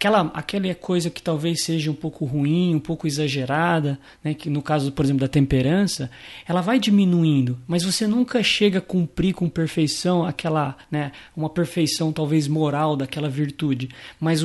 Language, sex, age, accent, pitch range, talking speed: Portuguese, male, 20-39, Brazilian, 150-175 Hz, 165 wpm